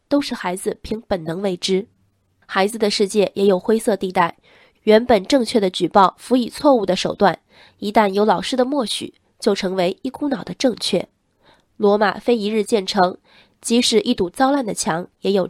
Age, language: 20-39, Chinese